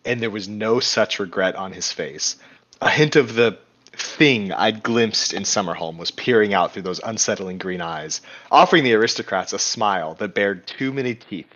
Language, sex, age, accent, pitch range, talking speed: English, male, 30-49, American, 105-125 Hz, 185 wpm